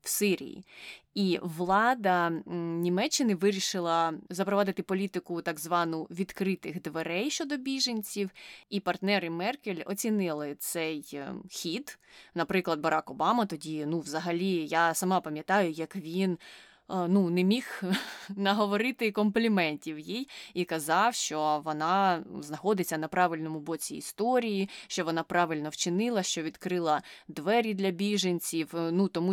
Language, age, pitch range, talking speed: Ukrainian, 20-39, 165-210 Hz, 115 wpm